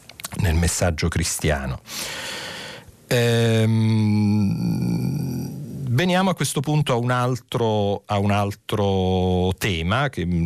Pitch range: 90-110 Hz